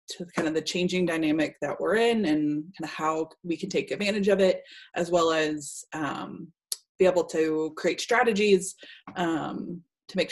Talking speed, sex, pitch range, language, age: 180 wpm, female, 170-210 Hz, English, 20-39